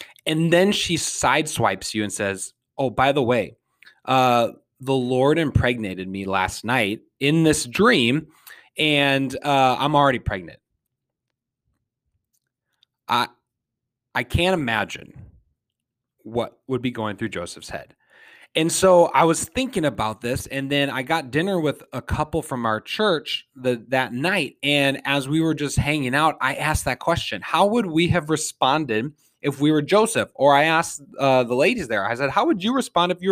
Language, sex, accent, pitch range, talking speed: English, male, American, 125-165 Hz, 165 wpm